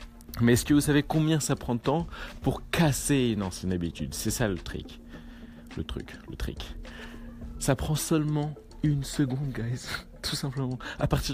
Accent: French